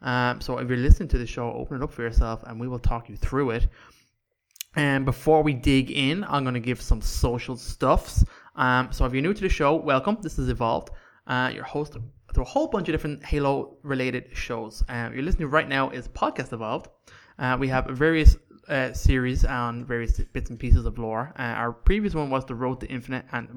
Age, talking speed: 20-39, 225 wpm